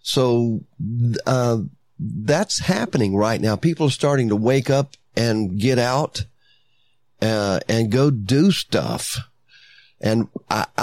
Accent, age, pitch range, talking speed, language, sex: American, 40-59, 105-130 Hz, 120 wpm, English, male